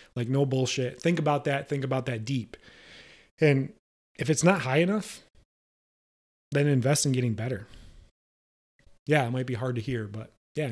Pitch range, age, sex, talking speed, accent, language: 120-145 Hz, 30-49, male, 170 wpm, American, English